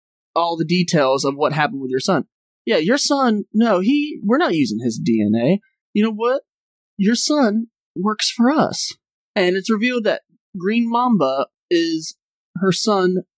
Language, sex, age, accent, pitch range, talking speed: English, male, 20-39, American, 155-220 Hz, 160 wpm